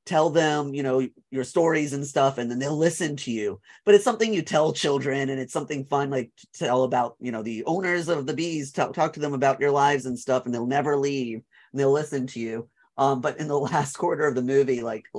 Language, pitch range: English, 120-145 Hz